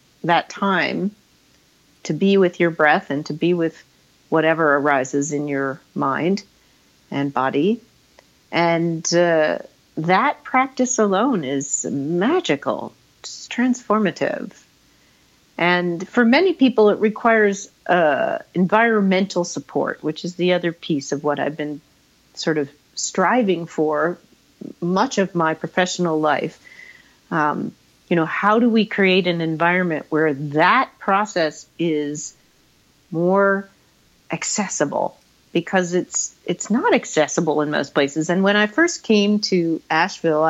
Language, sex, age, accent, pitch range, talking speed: English, female, 50-69, American, 155-205 Hz, 120 wpm